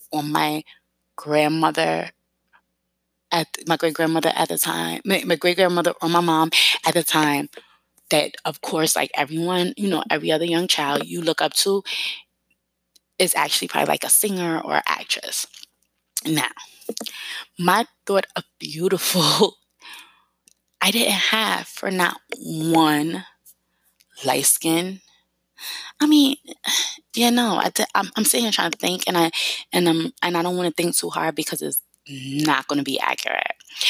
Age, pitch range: 20-39, 145-180 Hz